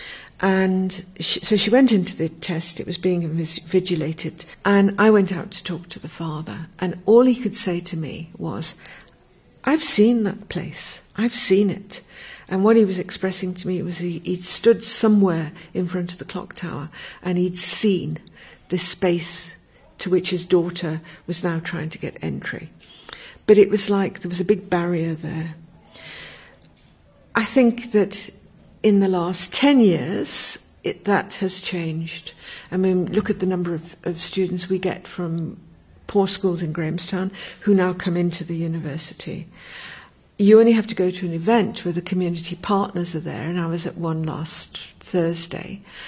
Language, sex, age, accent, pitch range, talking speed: English, female, 60-79, British, 170-200 Hz, 170 wpm